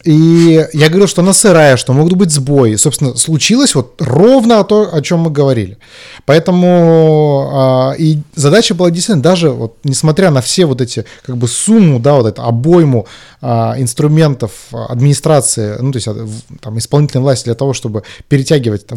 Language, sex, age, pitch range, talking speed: Russian, male, 30-49, 120-170 Hz, 160 wpm